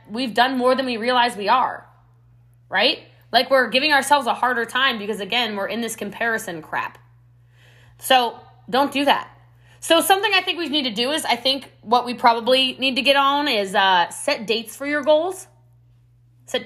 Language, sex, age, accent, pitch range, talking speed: English, female, 20-39, American, 175-280 Hz, 190 wpm